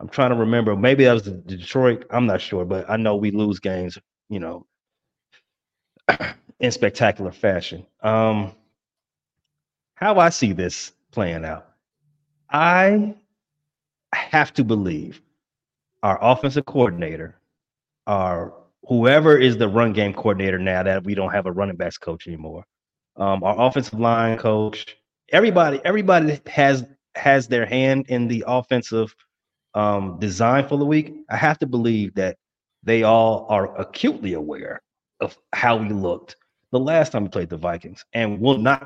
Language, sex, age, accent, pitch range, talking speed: English, male, 30-49, American, 110-140 Hz, 150 wpm